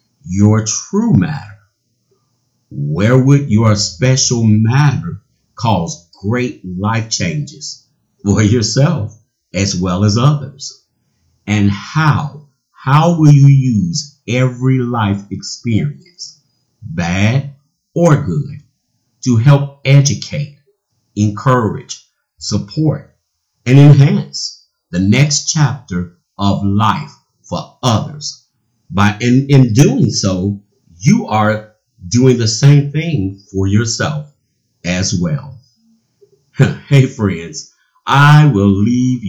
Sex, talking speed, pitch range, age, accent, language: male, 100 wpm, 105-145 Hz, 50-69, American, English